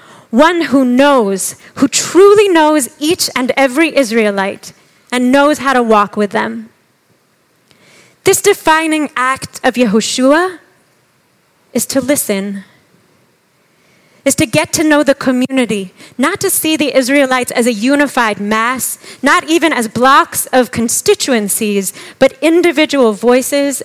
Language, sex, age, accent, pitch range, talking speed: English, female, 30-49, American, 225-290 Hz, 125 wpm